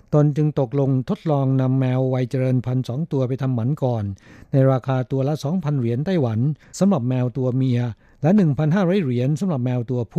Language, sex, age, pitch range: Thai, male, 60-79, 130-150 Hz